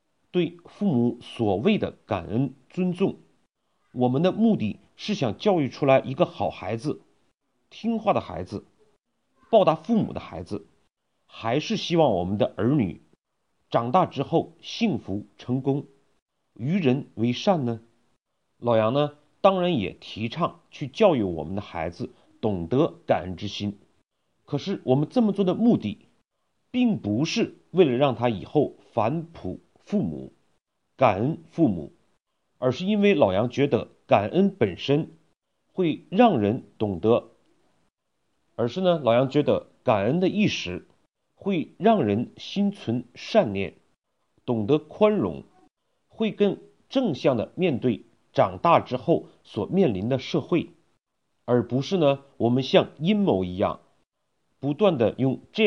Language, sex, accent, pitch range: Chinese, male, native, 120-185 Hz